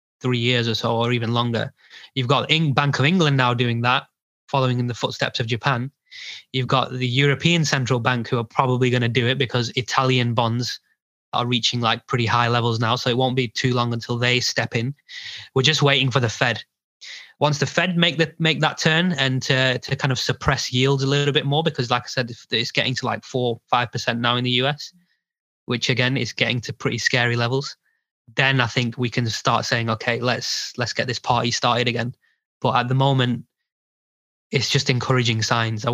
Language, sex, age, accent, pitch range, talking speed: English, male, 20-39, British, 120-135 Hz, 210 wpm